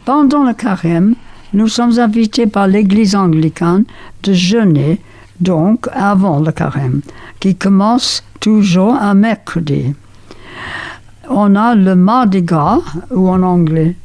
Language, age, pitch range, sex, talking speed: French, 60-79, 165-225 Hz, female, 120 wpm